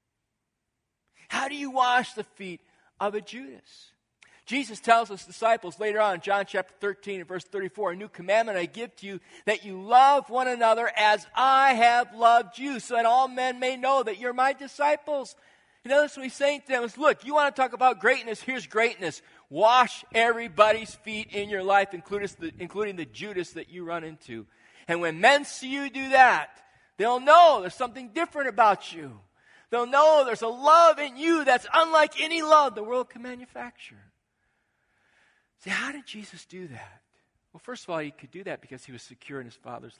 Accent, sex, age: American, male, 40-59